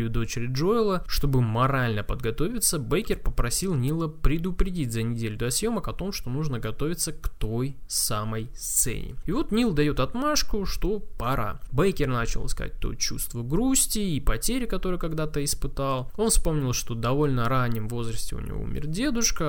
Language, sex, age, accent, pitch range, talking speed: Russian, male, 20-39, native, 120-155 Hz, 155 wpm